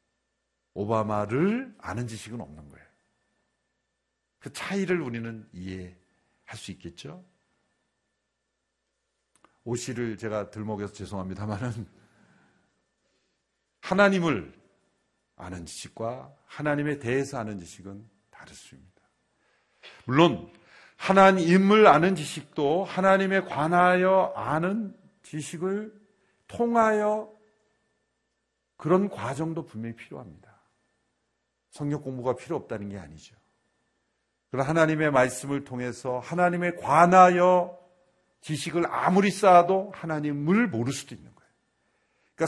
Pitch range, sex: 125-185 Hz, male